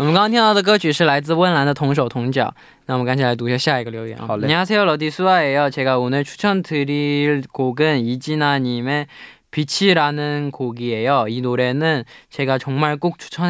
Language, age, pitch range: Korean, 20-39, 125-150 Hz